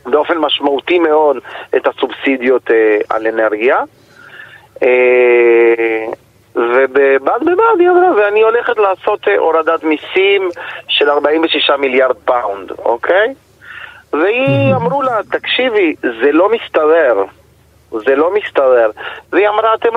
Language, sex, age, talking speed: Hebrew, male, 40-59, 110 wpm